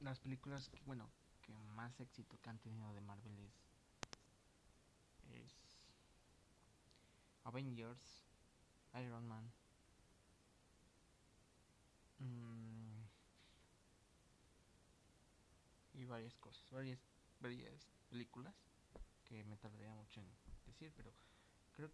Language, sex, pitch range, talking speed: Spanish, male, 105-125 Hz, 90 wpm